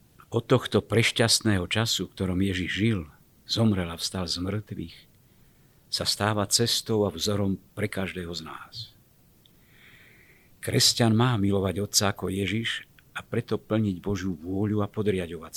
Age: 50-69